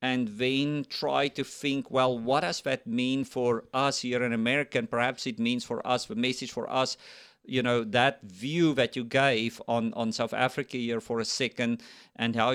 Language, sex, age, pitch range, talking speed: English, male, 50-69, 115-135 Hz, 200 wpm